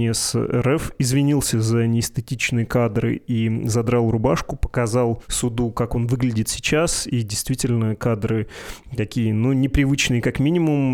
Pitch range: 115-130 Hz